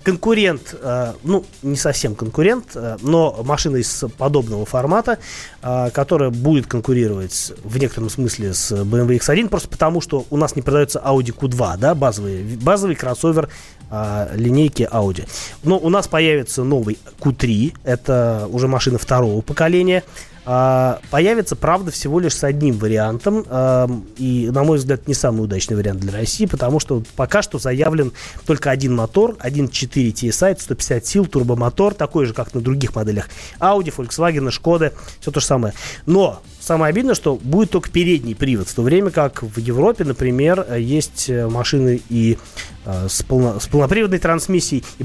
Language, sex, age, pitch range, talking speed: Russian, male, 20-39, 120-160 Hz, 155 wpm